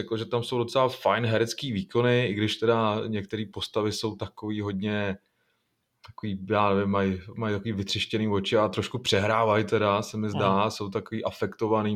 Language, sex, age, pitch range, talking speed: Czech, male, 20-39, 105-120 Hz, 165 wpm